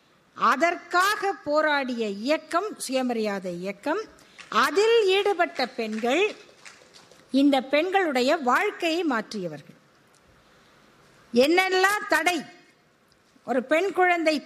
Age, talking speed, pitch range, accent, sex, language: 50-69, 70 wpm, 260-375 Hz, native, female, Tamil